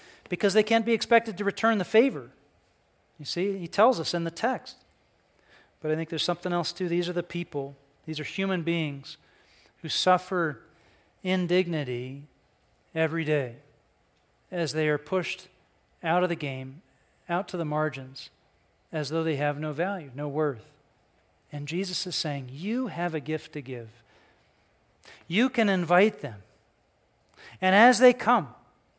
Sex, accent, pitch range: male, American, 165-230 Hz